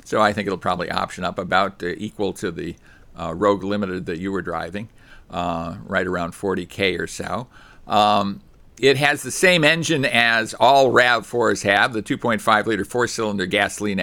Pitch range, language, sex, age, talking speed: 95-125 Hz, English, male, 50-69, 170 wpm